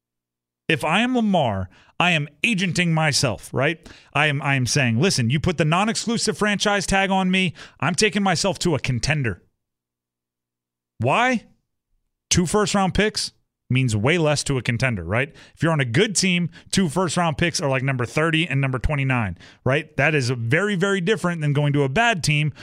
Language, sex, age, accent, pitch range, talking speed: English, male, 30-49, American, 110-180 Hz, 180 wpm